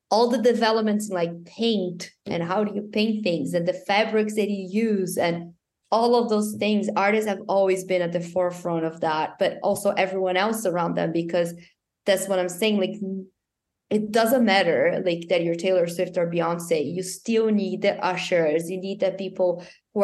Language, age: English, 20-39